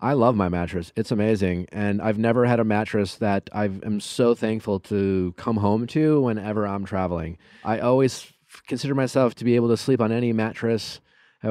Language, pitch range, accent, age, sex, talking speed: English, 105-135 Hz, American, 30-49, male, 200 wpm